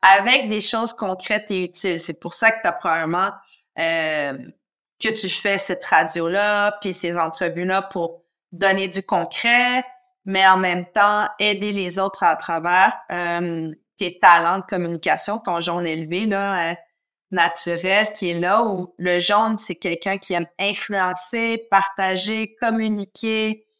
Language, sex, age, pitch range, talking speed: French, female, 30-49, 175-210 Hz, 150 wpm